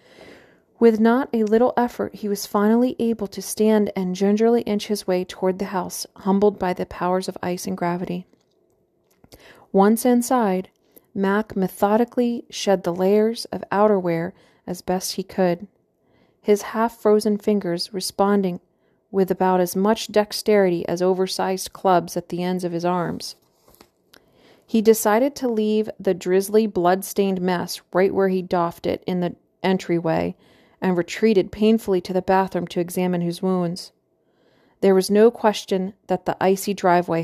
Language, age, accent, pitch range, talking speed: English, 40-59, American, 180-210 Hz, 150 wpm